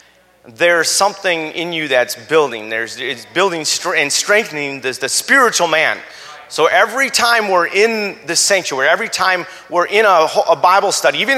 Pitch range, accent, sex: 125-185 Hz, American, male